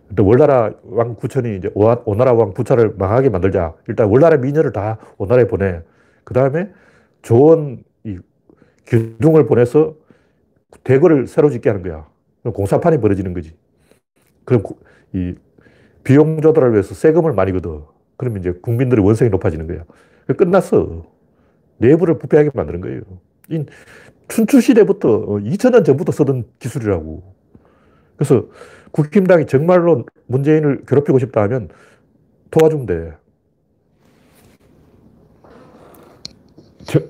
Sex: male